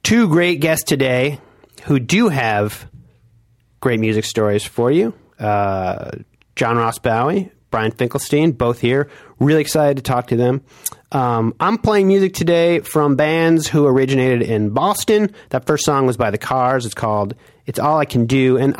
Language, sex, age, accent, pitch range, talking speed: English, male, 30-49, American, 110-140 Hz, 165 wpm